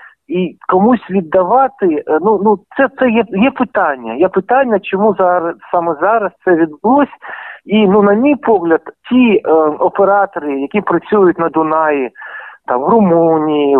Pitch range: 160-220 Hz